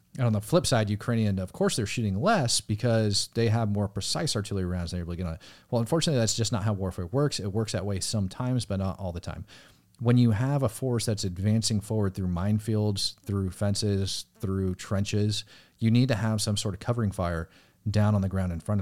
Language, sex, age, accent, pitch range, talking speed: English, male, 30-49, American, 90-110 Hz, 230 wpm